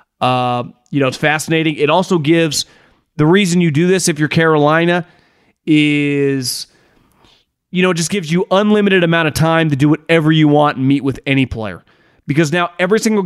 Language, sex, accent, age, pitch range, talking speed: English, male, American, 30-49, 145-185 Hz, 185 wpm